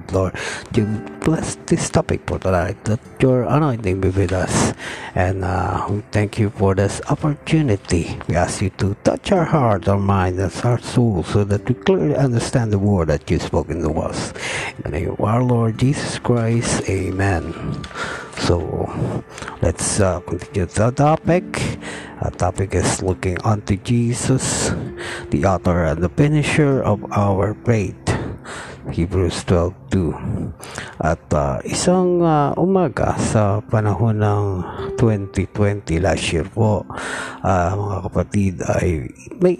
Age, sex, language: 50-69, male, Filipino